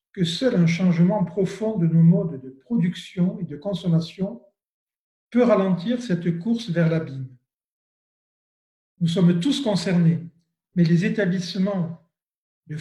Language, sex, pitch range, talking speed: French, male, 170-215 Hz, 125 wpm